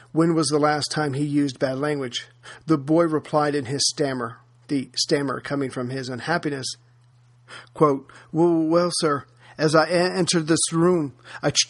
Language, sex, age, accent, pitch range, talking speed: English, male, 40-59, American, 125-160 Hz, 155 wpm